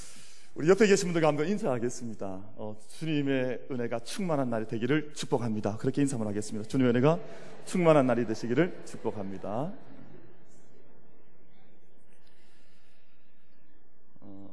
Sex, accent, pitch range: male, native, 110-145 Hz